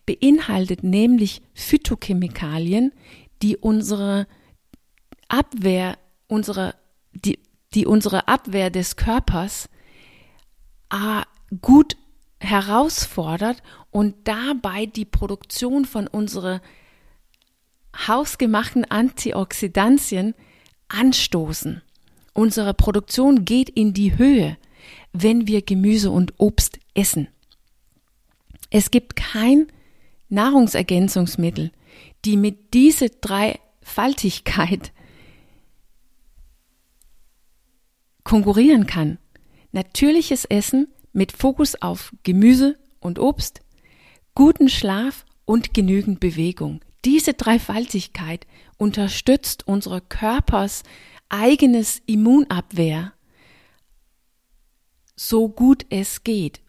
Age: 40-59